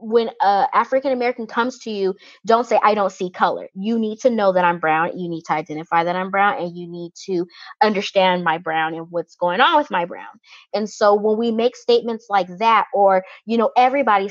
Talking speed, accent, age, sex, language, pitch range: 215 wpm, American, 20-39, female, English, 190-230 Hz